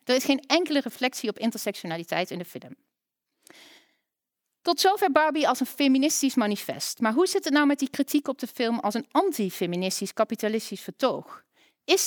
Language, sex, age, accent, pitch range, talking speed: Dutch, female, 40-59, Dutch, 190-270 Hz, 170 wpm